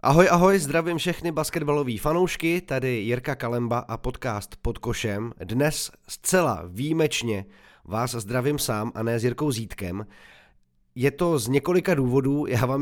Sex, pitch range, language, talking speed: male, 110-135 Hz, Czech, 145 wpm